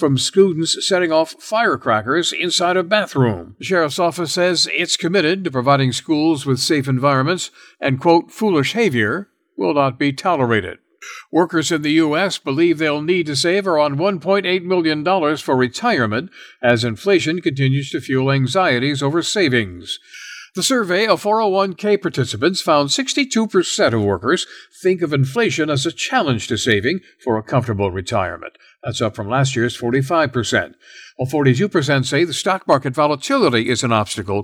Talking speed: 150 wpm